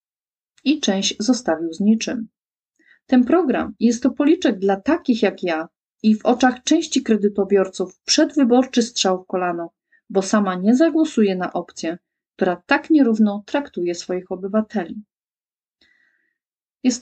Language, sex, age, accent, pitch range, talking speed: Polish, female, 40-59, native, 185-255 Hz, 125 wpm